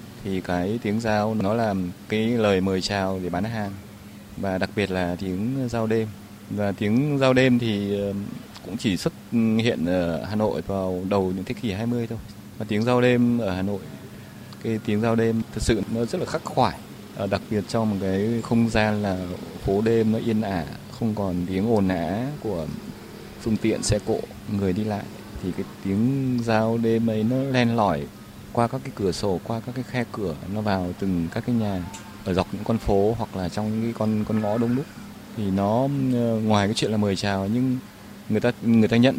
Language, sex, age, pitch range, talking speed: Vietnamese, male, 20-39, 100-115 Hz, 210 wpm